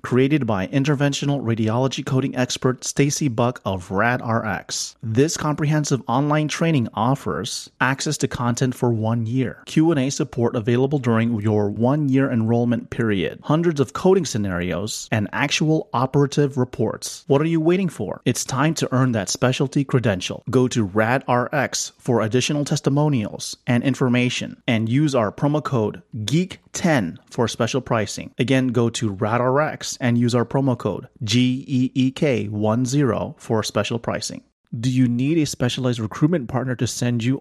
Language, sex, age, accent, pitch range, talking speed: English, male, 30-49, American, 115-140 Hz, 150 wpm